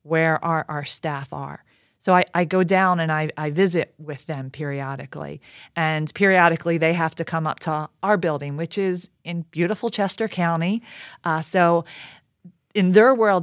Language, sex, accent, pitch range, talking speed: English, female, American, 155-180 Hz, 170 wpm